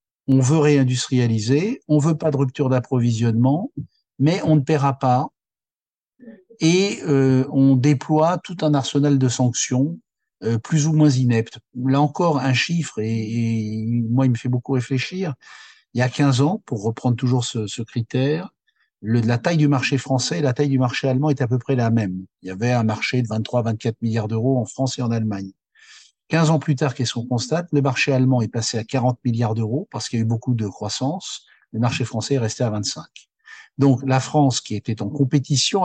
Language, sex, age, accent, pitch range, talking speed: French, male, 50-69, French, 115-140 Hz, 205 wpm